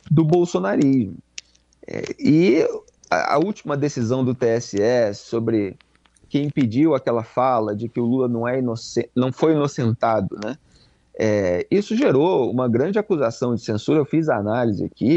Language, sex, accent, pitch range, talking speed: Portuguese, male, Brazilian, 110-155 Hz, 155 wpm